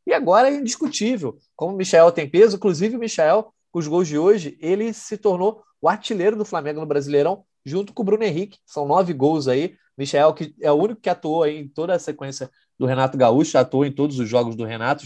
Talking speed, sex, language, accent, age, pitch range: 230 wpm, male, Portuguese, Brazilian, 20-39, 140-200 Hz